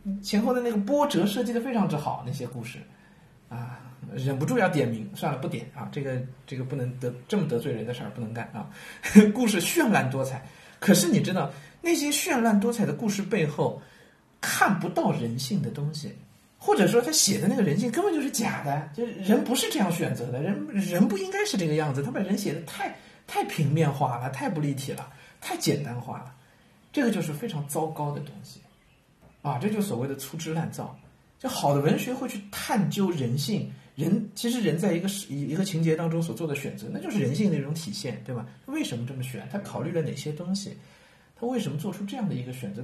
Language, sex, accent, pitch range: Chinese, male, native, 140-210 Hz